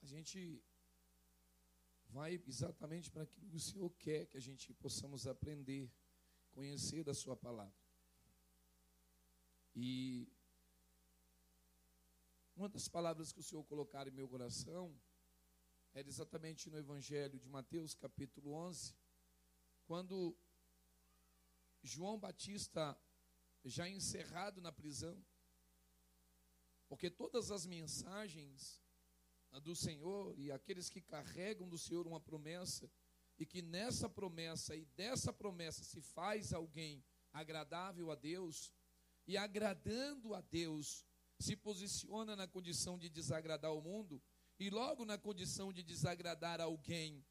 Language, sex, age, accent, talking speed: Portuguese, male, 40-59, Brazilian, 115 wpm